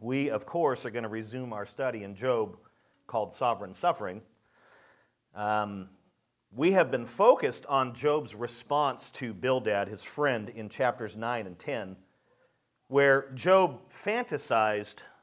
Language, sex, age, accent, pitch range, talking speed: English, male, 50-69, American, 120-150 Hz, 135 wpm